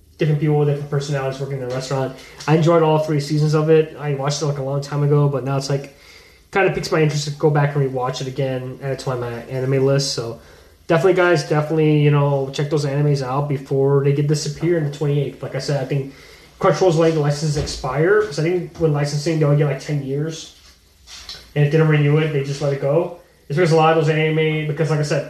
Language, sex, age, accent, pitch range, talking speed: English, male, 20-39, American, 130-155 Hz, 255 wpm